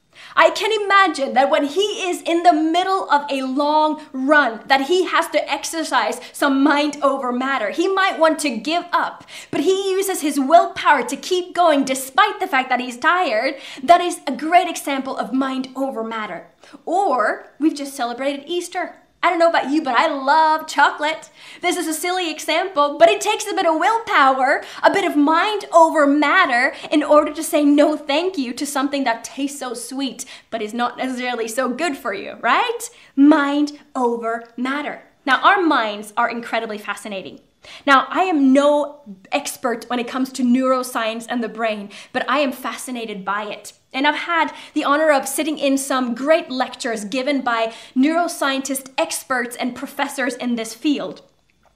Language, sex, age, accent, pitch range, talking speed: English, female, 20-39, American, 255-330 Hz, 180 wpm